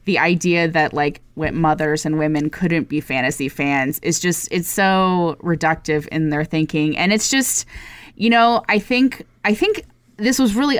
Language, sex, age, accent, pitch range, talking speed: English, female, 20-39, American, 155-195 Hz, 170 wpm